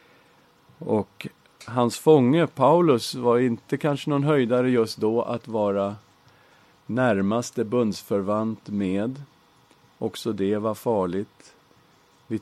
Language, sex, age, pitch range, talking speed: English, male, 50-69, 100-120 Hz, 100 wpm